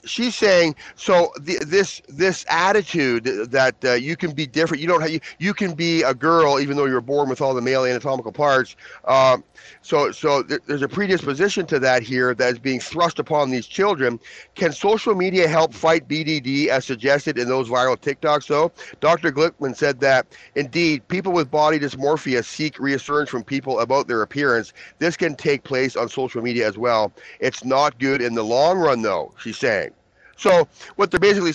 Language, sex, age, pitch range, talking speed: English, male, 40-59, 130-165 Hz, 190 wpm